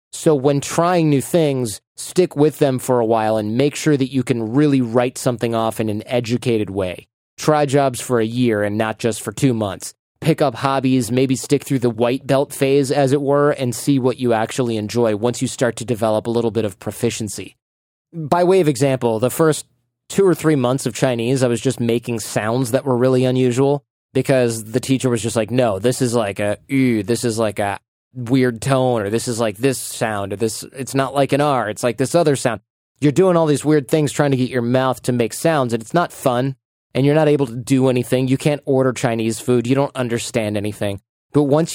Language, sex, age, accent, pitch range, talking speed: English, male, 20-39, American, 115-140 Hz, 225 wpm